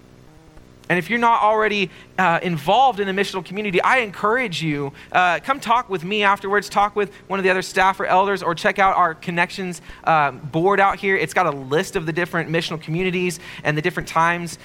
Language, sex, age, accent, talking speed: English, male, 30-49, American, 210 wpm